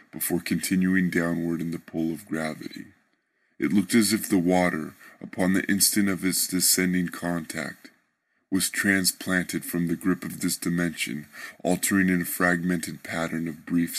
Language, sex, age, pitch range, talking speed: English, female, 20-39, 85-95 Hz, 155 wpm